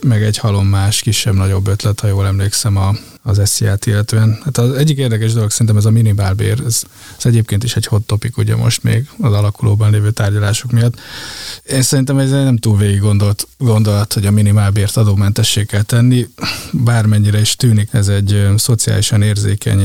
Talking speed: 185 wpm